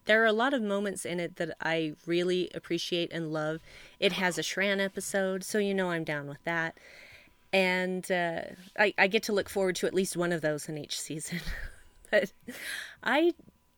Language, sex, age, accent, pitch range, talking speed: English, female, 30-49, American, 165-220 Hz, 195 wpm